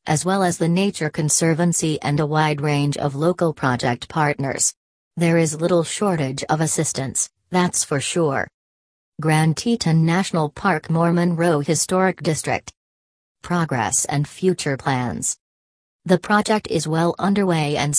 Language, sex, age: English, female, 40-59